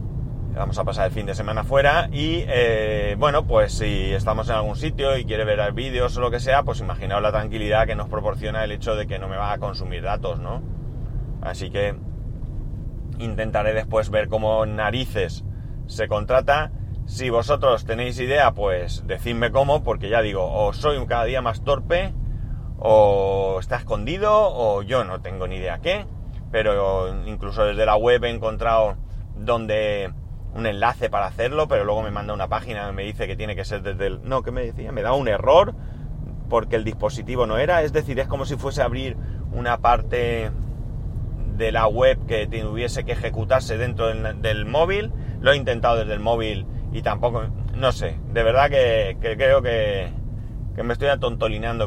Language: Spanish